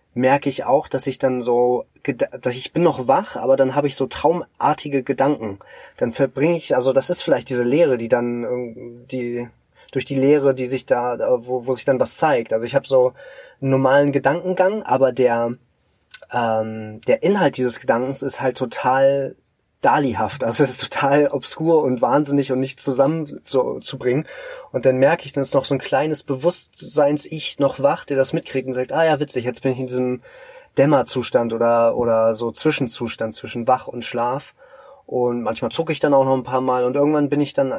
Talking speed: 195 wpm